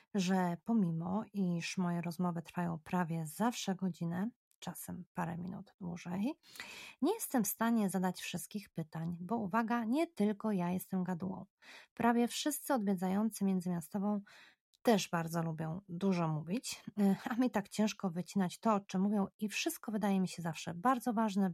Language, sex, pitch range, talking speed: Polish, female, 175-220 Hz, 150 wpm